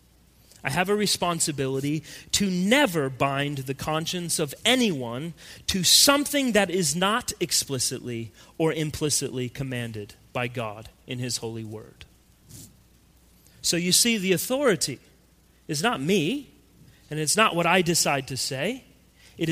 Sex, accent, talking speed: male, American, 130 wpm